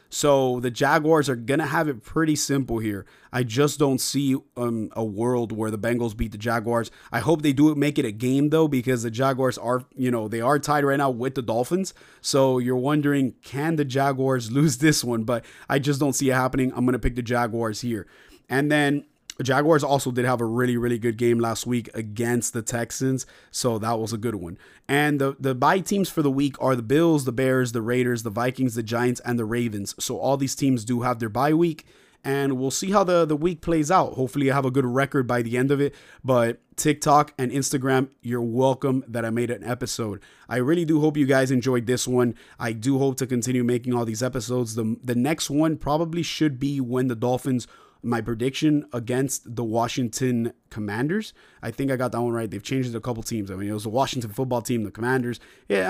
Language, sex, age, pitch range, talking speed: English, male, 30-49, 120-140 Hz, 225 wpm